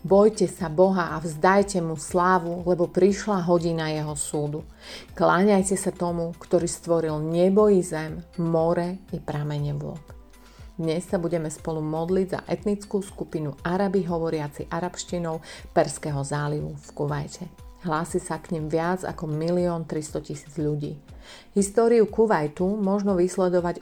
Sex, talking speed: female, 130 wpm